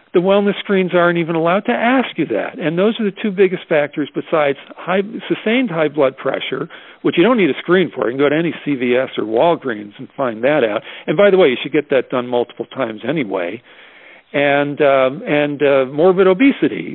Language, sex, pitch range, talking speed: English, male, 140-185 Hz, 210 wpm